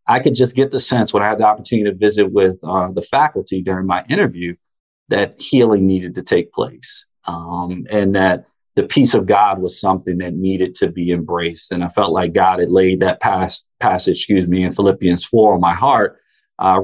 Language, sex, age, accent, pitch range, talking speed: English, male, 40-59, American, 90-110 Hz, 210 wpm